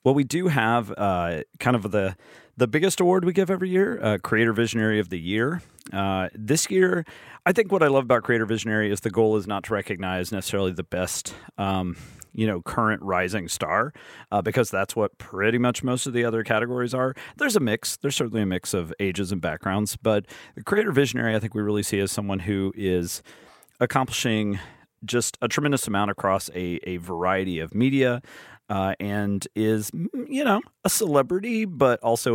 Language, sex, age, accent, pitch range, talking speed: English, male, 40-59, American, 100-125 Hz, 195 wpm